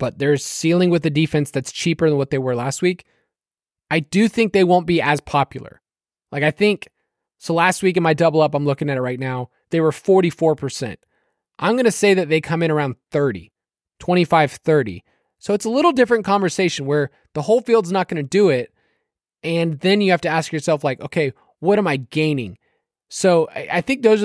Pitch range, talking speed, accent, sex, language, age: 145-185 Hz, 215 wpm, American, male, English, 20-39